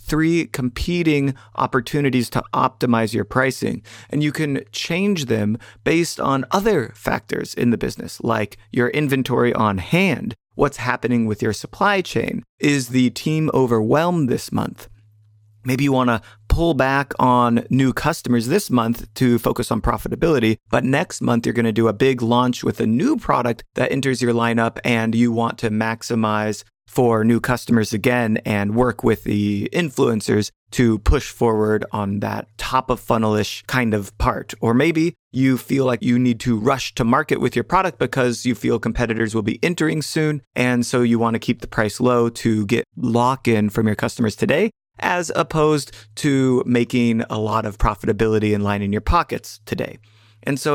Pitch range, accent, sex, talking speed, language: 110-135 Hz, American, male, 175 wpm, English